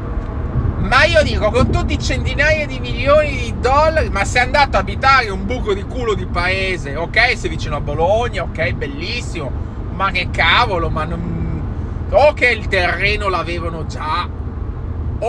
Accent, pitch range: native, 90-110 Hz